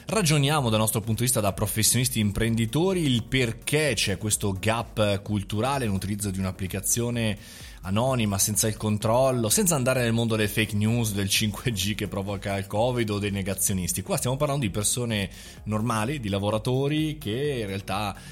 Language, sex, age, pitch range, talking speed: Italian, male, 20-39, 100-145 Hz, 160 wpm